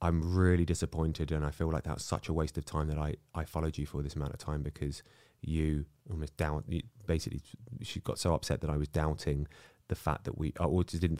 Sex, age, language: male, 30-49, English